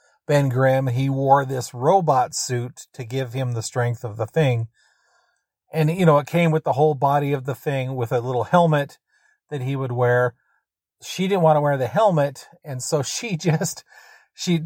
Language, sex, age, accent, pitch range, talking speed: English, male, 40-59, American, 125-160 Hz, 190 wpm